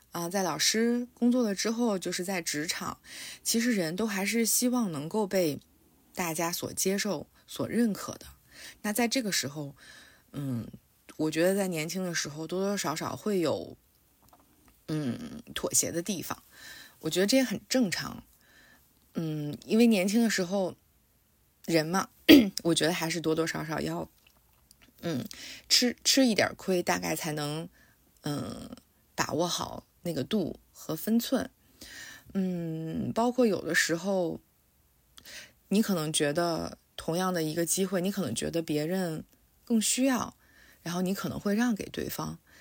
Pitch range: 160-220 Hz